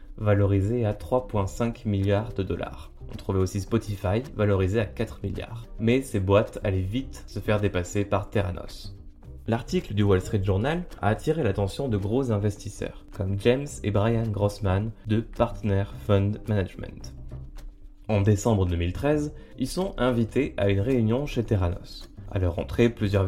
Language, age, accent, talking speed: French, 20-39, French, 150 wpm